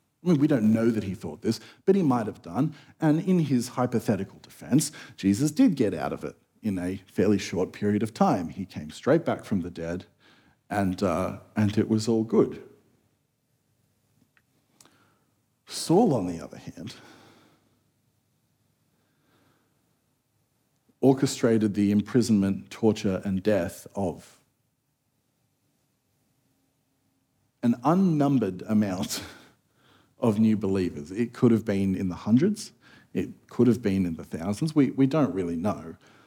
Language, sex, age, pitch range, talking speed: English, male, 50-69, 100-140 Hz, 140 wpm